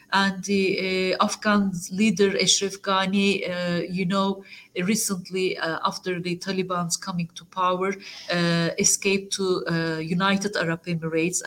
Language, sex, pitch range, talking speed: Turkish, female, 180-210 Hz, 130 wpm